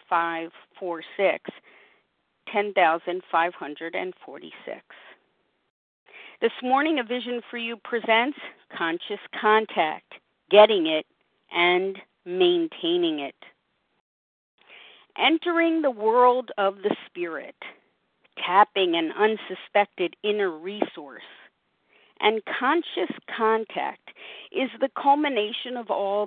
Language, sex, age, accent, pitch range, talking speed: English, female, 50-69, American, 190-245 Hz, 75 wpm